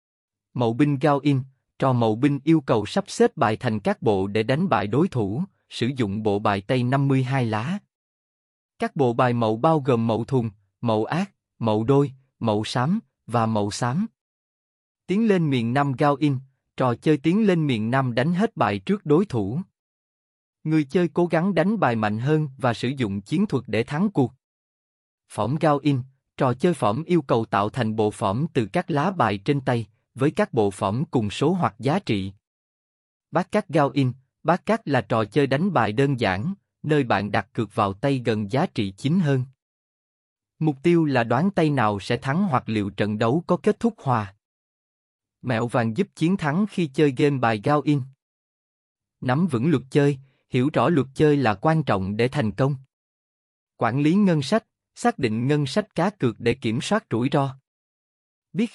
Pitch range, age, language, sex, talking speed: 115-160 Hz, 20-39, Vietnamese, male, 190 wpm